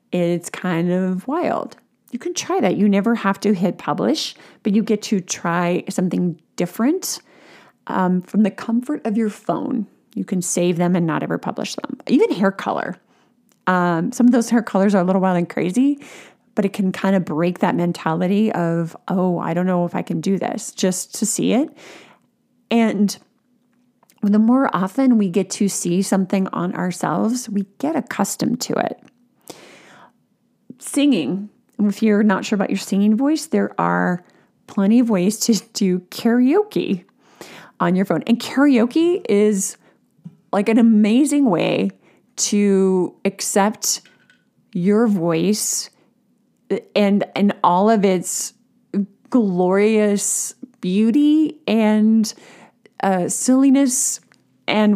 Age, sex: 30-49, female